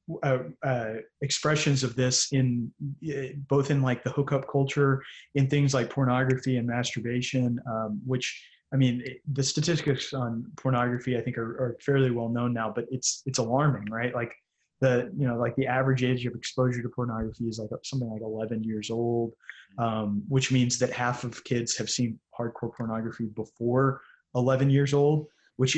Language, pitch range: English, 120-135 Hz